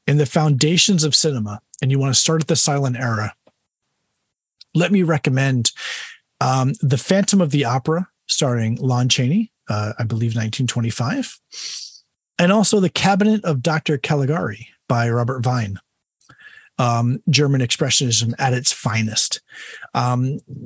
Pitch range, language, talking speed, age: 125-155 Hz, English, 135 wpm, 30-49